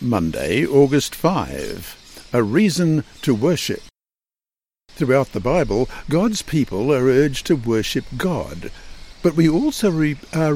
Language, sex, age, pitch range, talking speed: English, male, 60-79, 110-165 Hz, 120 wpm